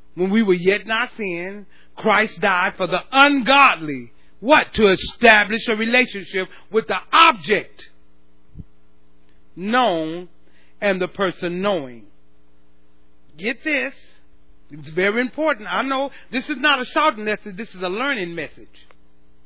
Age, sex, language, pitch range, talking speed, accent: 40-59, male, English, 160-240 Hz, 130 wpm, American